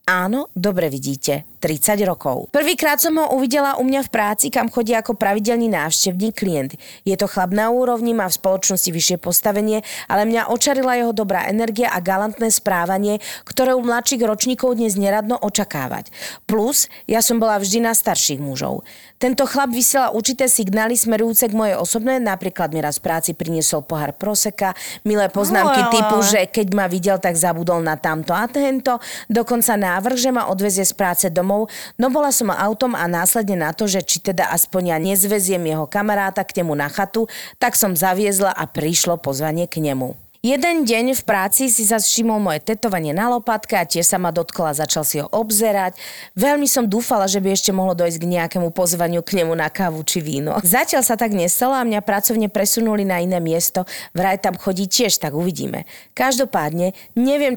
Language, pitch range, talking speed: Slovak, 180-230 Hz, 180 wpm